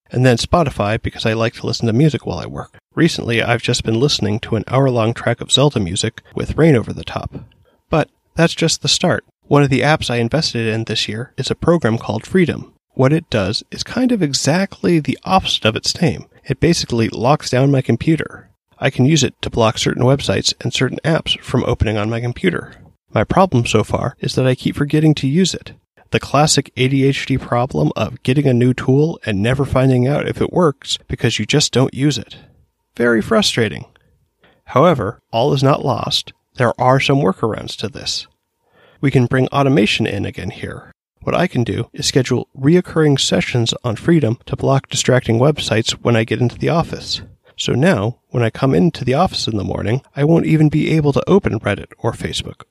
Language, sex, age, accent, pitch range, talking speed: English, male, 30-49, American, 115-145 Hz, 205 wpm